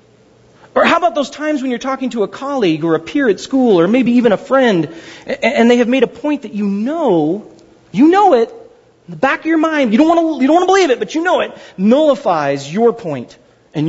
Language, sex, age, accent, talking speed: English, male, 40-59, American, 235 wpm